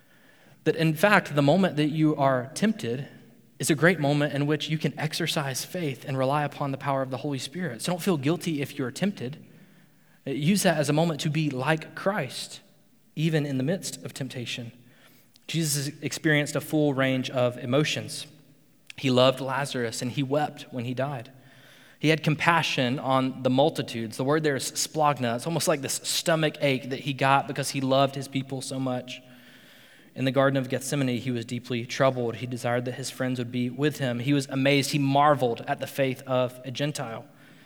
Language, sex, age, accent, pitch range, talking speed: English, male, 20-39, American, 130-165 Hz, 195 wpm